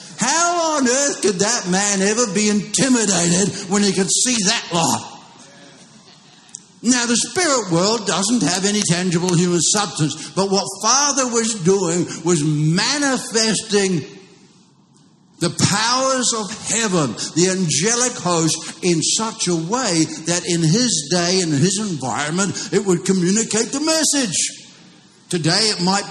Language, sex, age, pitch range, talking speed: English, male, 60-79, 165-210 Hz, 135 wpm